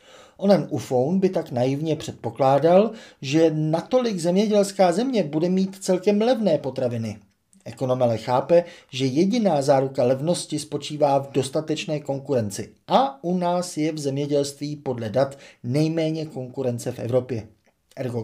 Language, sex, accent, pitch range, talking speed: Czech, male, native, 130-175 Hz, 125 wpm